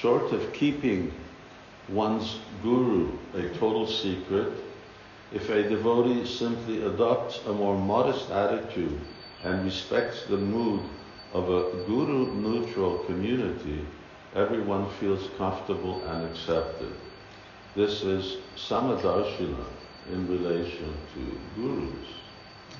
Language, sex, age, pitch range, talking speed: English, male, 60-79, 90-105 Hz, 95 wpm